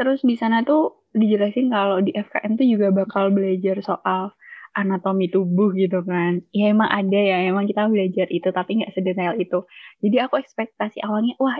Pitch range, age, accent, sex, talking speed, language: 195-235 Hz, 10-29, native, female, 175 wpm, Indonesian